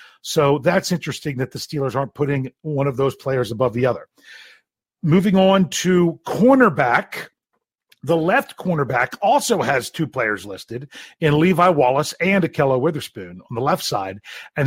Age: 40-59